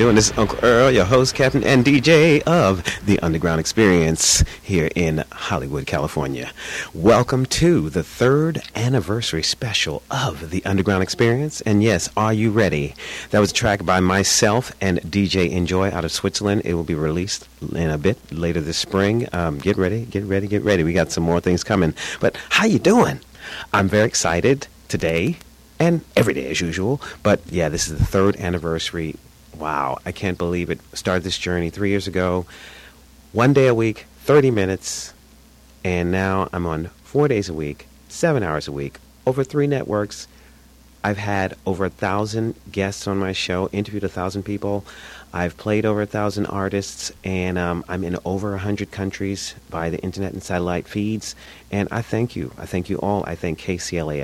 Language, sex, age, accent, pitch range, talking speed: English, male, 40-59, American, 85-105 Hz, 180 wpm